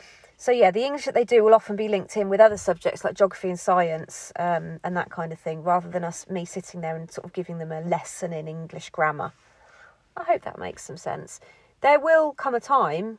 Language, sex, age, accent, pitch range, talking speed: English, female, 30-49, British, 175-215 Hz, 235 wpm